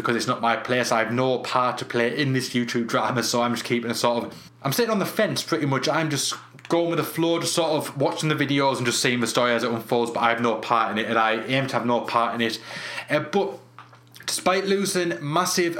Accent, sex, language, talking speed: British, male, English, 265 wpm